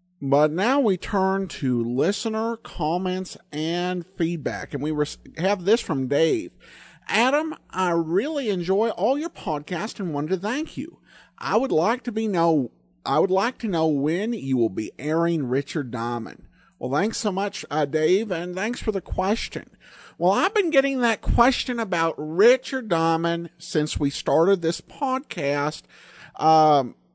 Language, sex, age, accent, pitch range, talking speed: English, male, 50-69, American, 155-215 Hz, 160 wpm